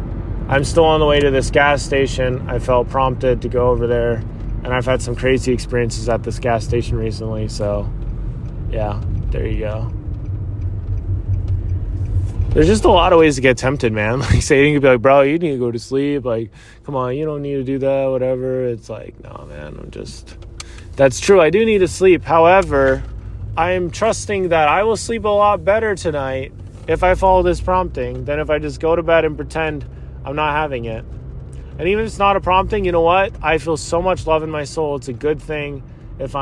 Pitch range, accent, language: 110-150 Hz, American, English